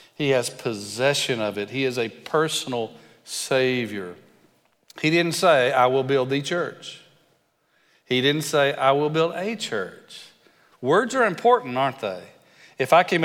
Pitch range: 115-150 Hz